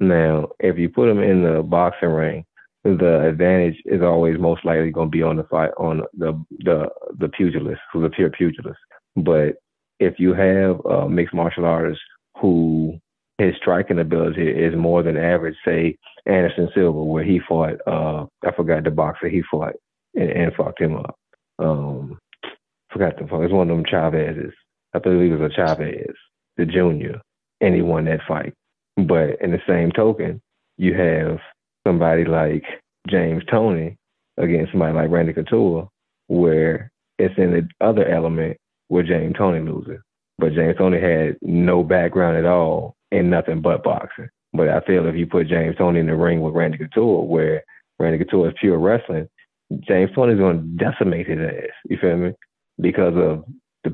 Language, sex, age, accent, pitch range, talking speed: English, male, 30-49, American, 80-90 Hz, 175 wpm